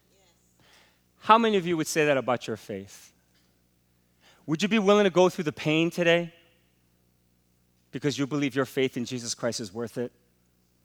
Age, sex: 30-49, male